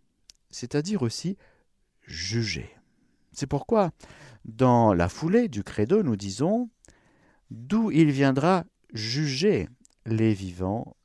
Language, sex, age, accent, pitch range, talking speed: French, male, 50-69, French, 100-155 Hz, 100 wpm